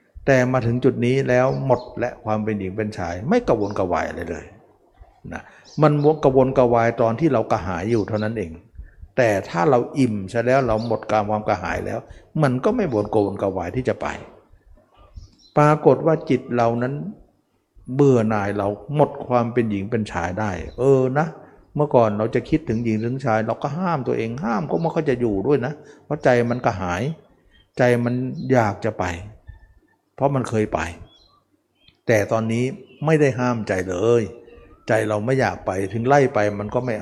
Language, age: Thai, 60-79